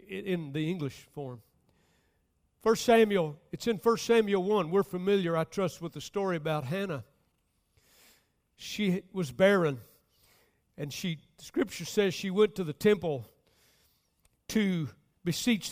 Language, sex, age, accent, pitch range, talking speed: English, male, 60-79, American, 155-210 Hz, 130 wpm